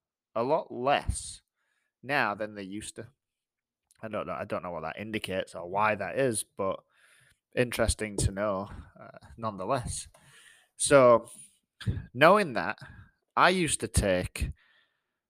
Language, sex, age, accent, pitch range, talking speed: English, male, 20-39, British, 100-120 Hz, 135 wpm